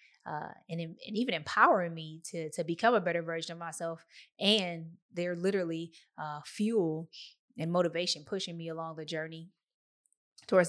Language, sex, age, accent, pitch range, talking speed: English, female, 20-39, American, 165-200 Hz, 155 wpm